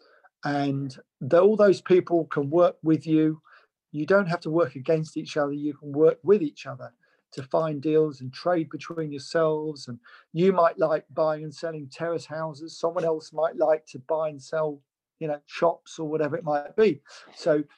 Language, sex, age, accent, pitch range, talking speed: Swedish, male, 50-69, British, 145-175 Hz, 185 wpm